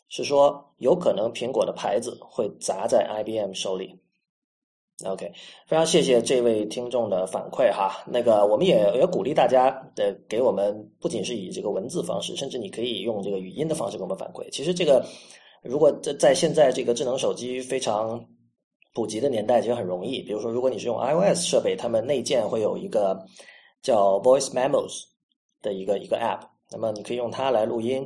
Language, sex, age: Chinese, male, 30-49